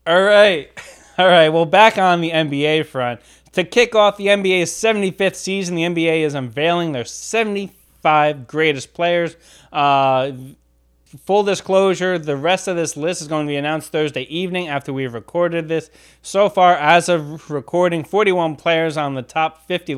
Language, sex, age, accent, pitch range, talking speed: English, male, 20-39, American, 135-180 Hz, 165 wpm